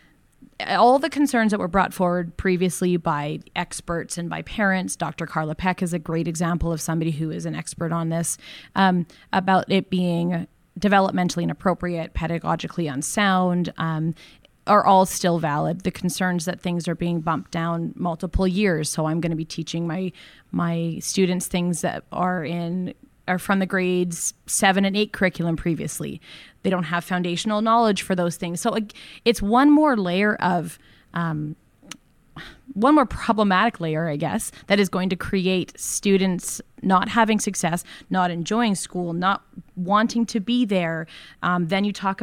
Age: 20-39